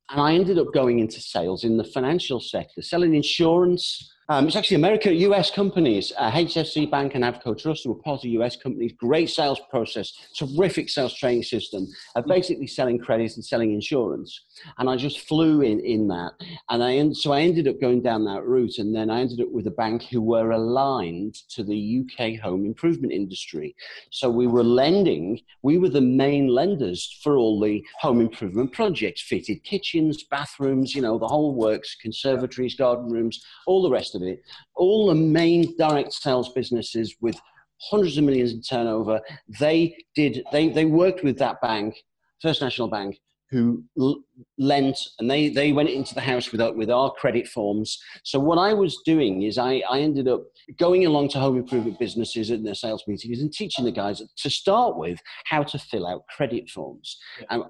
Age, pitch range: 40-59, 115-155 Hz